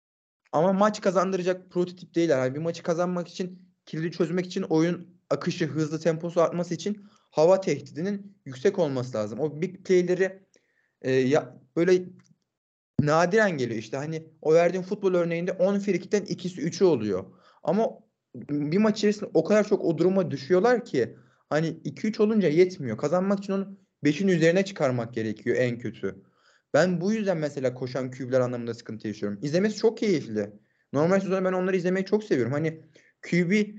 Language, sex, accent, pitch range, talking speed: Turkish, male, native, 155-195 Hz, 155 wpm